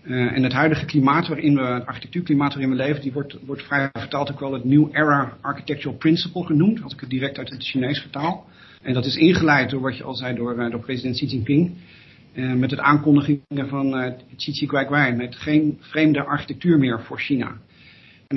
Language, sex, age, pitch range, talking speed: Dutch, male, 40-59, 130-150 Hz, 205 wpm